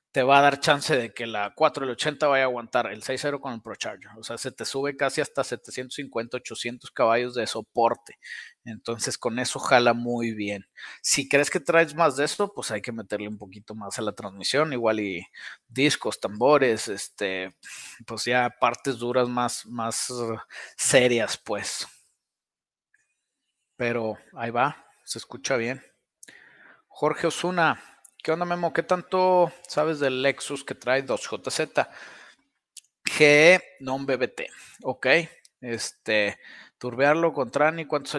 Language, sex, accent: Spanish, male, Mexican